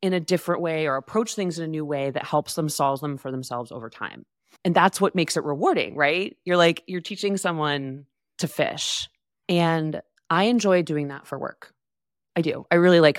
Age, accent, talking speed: 20-39, American, 210 wpm